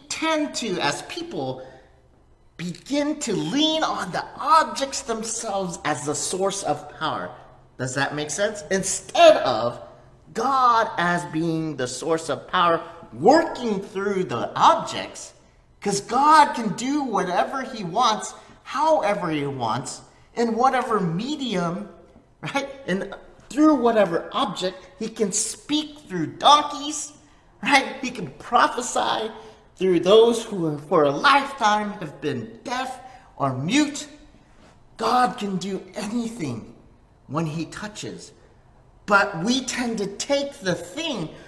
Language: English